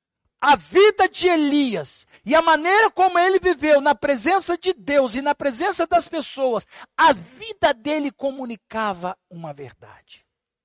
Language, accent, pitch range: Portuguese, Brazilian, 260-330 Hz